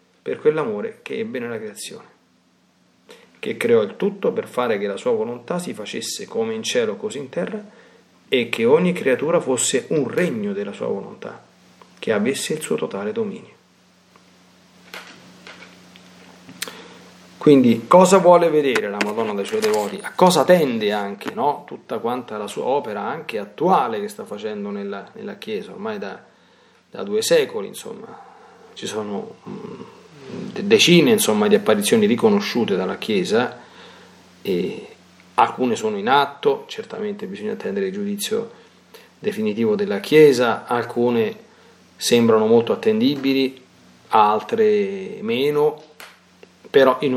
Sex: male